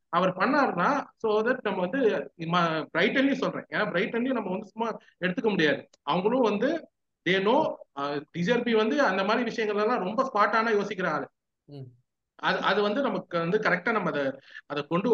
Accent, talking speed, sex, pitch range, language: native, 40 wpm, male, 170-225 Hz, Tamil